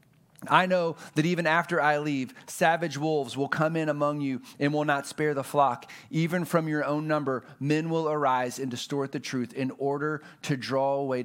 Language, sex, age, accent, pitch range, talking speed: English, male, 30-49, American, 125-155 Hz, 200 wpm